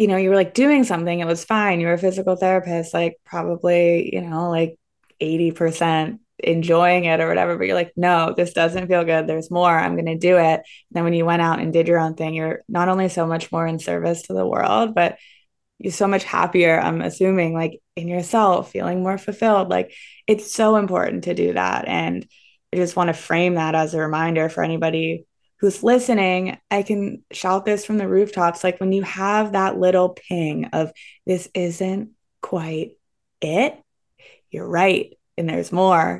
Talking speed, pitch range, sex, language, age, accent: 195 wpm, 165-190 Hz, female, English, 20-39, American